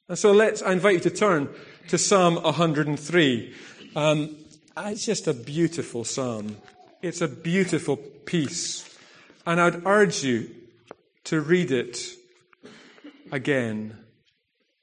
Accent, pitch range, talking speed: British, 145-215 Hz, 115 wpm